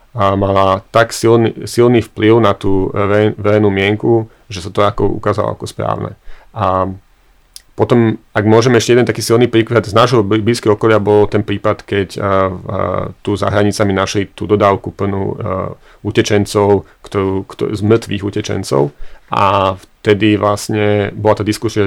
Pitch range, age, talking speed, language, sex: 100-110 Hz, 40-59, 155 wpm, Slovak, male